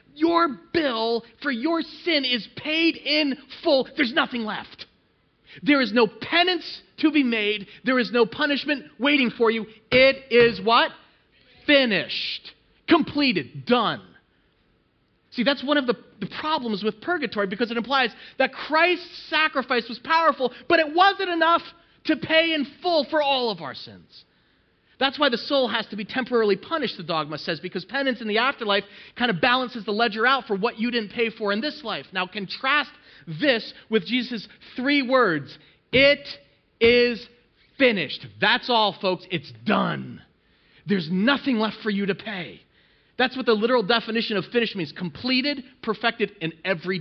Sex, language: male, English